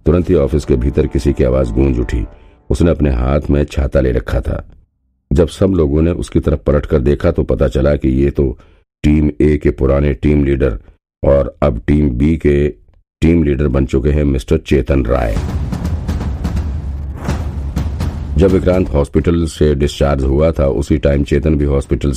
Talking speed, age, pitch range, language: 110 wpm, 50-69, 70-85 Hz, Hindi